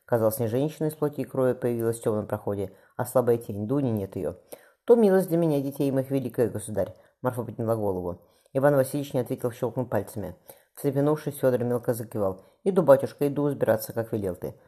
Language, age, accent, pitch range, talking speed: Russian, 20-39, native, 110-145 Hz, 185 wpm